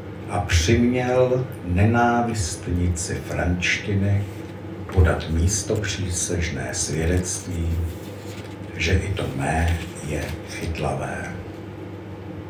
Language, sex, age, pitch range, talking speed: Czech, male, 60-79, 85-105 Hz, 65 wpm